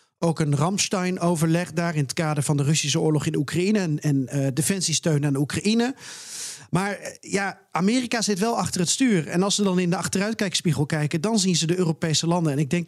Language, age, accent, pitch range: Dutch, 40-59, Dutch, 155-185 Hz